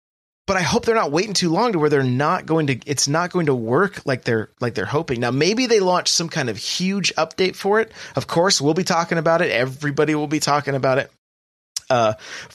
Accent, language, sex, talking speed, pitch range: American, English, male, 235 wpm, 135-195 Hz